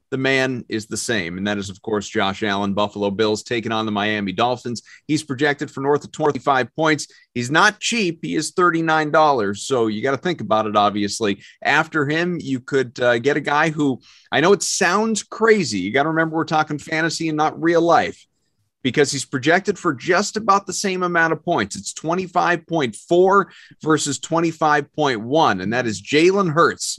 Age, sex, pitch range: 30-49, male, 115-160 Hz